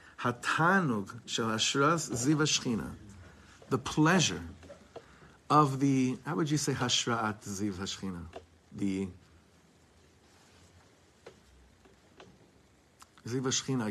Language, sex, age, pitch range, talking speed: English, male, 50-69, 100-135 Hz, 80 wpm